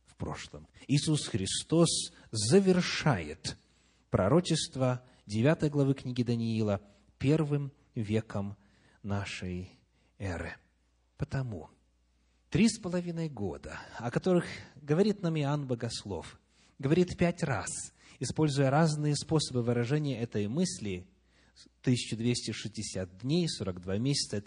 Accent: native